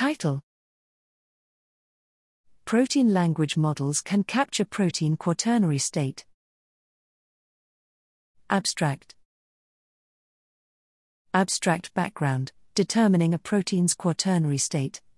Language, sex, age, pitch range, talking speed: English, female, 40-59, 155-215 Hz, 65 wpm